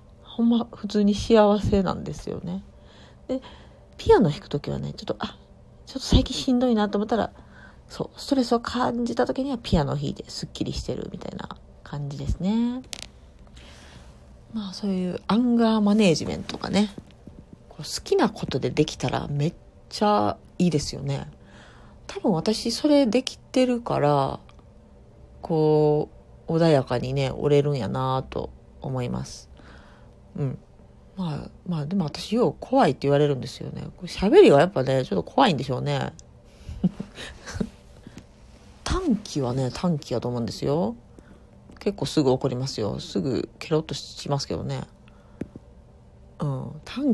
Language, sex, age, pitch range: Japanese, female, 40-59, 135-210 Hz